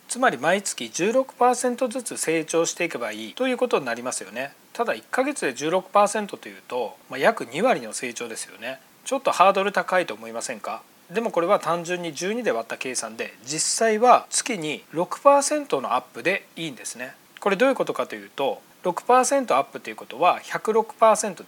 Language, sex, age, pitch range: Japanese, male, 40-59, 170-235 Hz